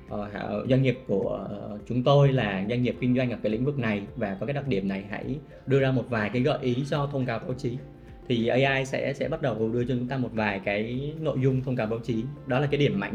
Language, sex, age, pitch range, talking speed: Vietnamese, male, 20-39, 110-140 Hz, 265 wpm